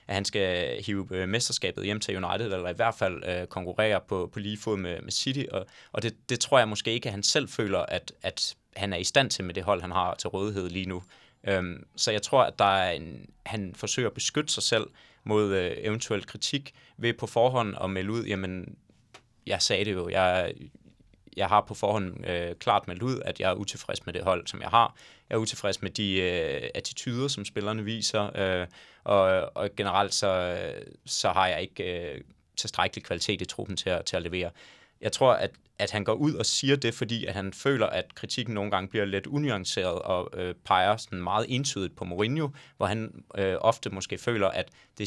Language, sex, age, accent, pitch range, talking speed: Danish, male, 20-39, native, 95-115 Hz, 210 wpm